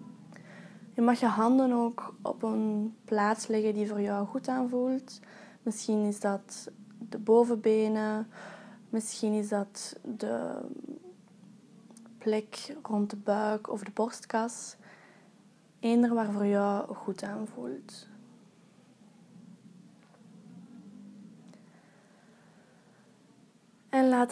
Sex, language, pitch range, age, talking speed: female, Dutch, 205-230 Hz, 20-39, 95 wpm